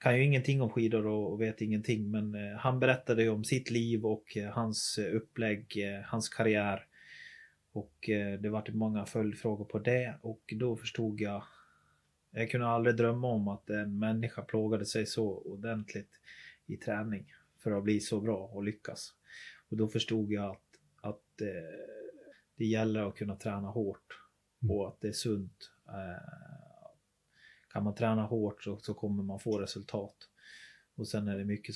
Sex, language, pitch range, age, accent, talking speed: male, Swedish, 105-115 Hz, 30-49, native, 160 wpm